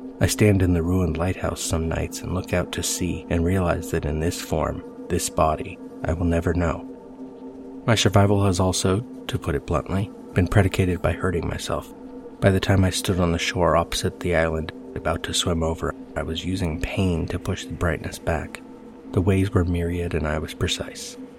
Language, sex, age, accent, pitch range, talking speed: English, male, 30-49, American, 80-100 Hz, 195 wpm